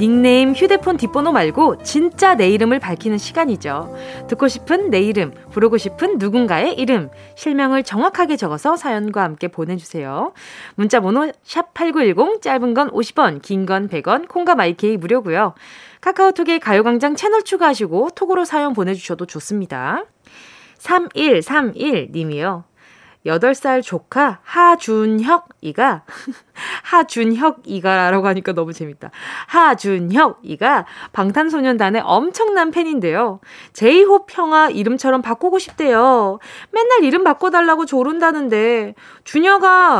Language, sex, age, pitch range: Korean, female, 20-39, 200-330 Hz